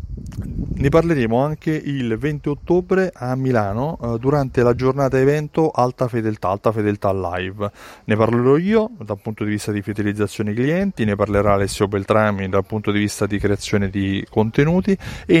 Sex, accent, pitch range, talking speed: male, native, 105-135 Hz, 165 wpm